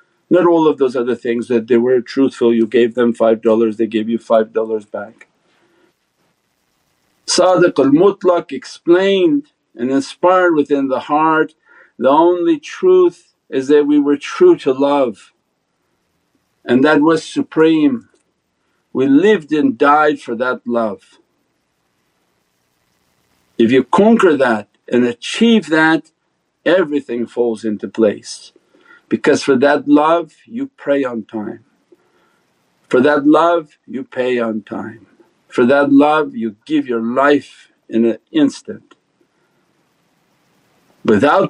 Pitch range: 115-155 Hz